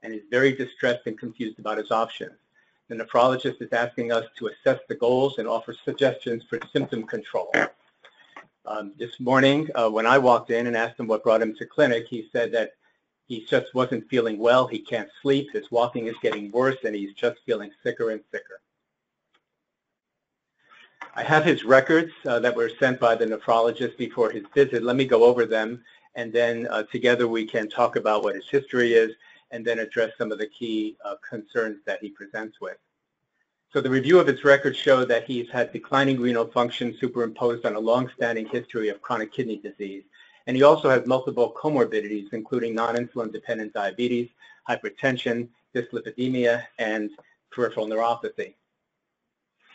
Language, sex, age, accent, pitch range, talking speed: English, male, 50-69, American, 115-130 Hz, 170 wpm